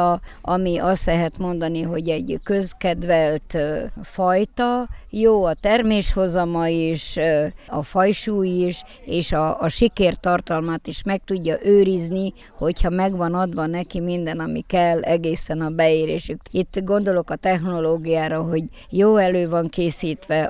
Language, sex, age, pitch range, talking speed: Hungarian, male, 50-69, 165-195 Hz, 125 wpm